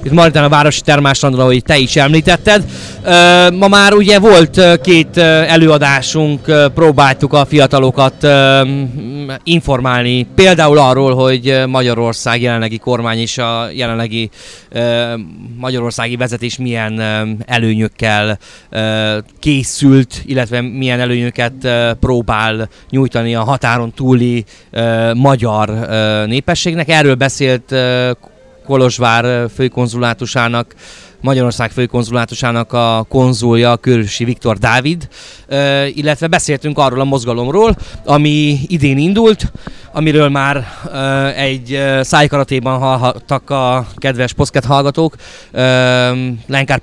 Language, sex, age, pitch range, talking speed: Hungarian, male, 20-39, 120-145 Hz, 90 wpm